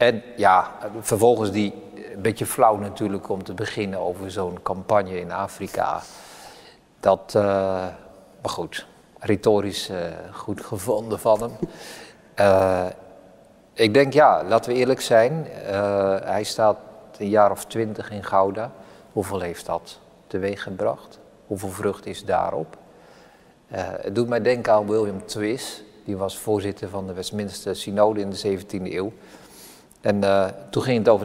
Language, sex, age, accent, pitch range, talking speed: Dutch, male, 50-69, Dutch, 95-115 Hz, 150 wpm